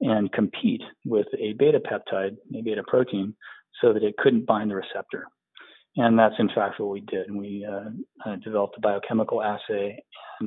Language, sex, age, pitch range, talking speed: English, male, 40-59, 100-130 Hz, 185 wpm